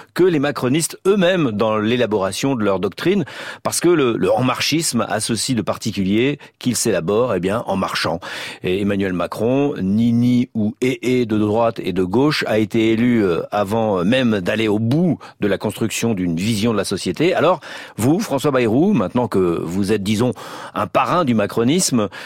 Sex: male